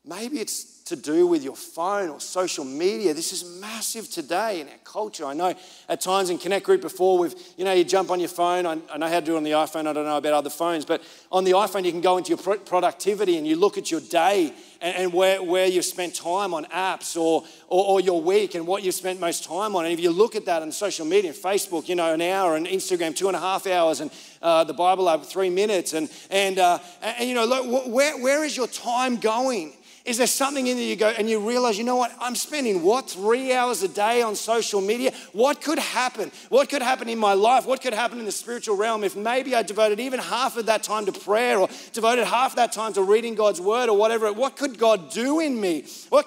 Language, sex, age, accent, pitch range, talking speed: English, male, 30-49, Australian, 185-255 Hz, 255 wpm